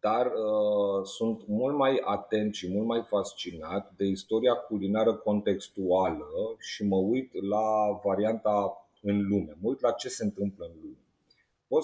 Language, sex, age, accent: Romanian, male, 30-49, native